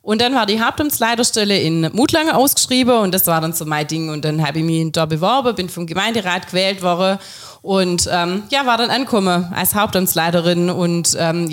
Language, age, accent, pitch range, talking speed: German, 30-49, German, 175-220 Hz, 195 wpm